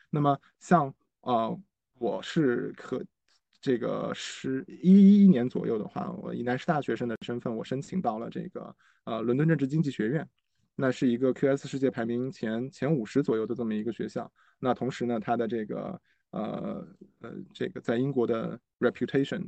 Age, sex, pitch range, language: 20-39, male, 120-150 Hz, Chinese